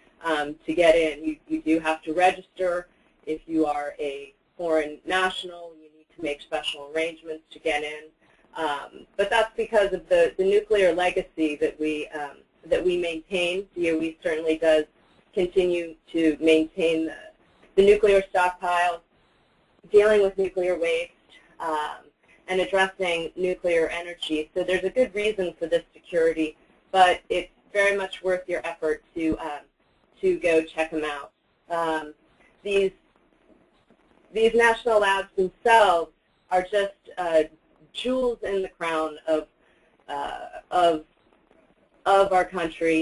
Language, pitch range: English, 160-190 Hz